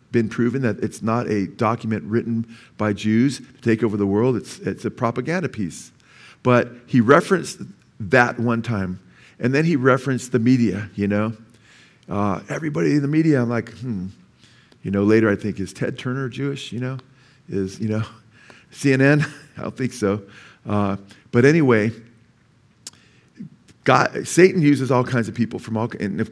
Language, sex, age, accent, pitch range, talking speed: English, male, 50-69, American, 115-145 Hz, 170 wpm